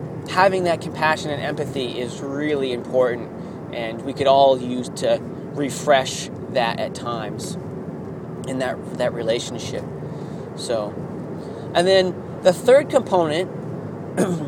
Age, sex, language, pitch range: 30-49, male, English, 145-185 Hz